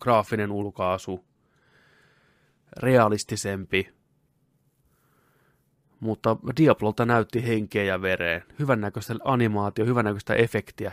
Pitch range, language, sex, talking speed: 100-120 Hz, Finnish, male, 70 wpm